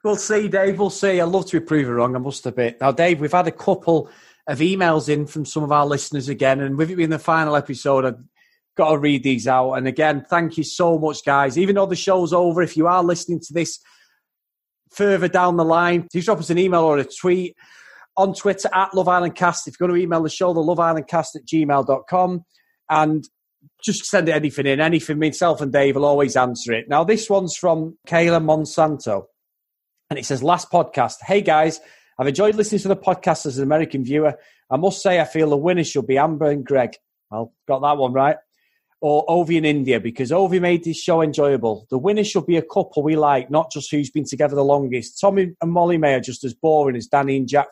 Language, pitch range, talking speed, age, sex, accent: English, 140-175 Hz, 225 wpm, 30-49, male, British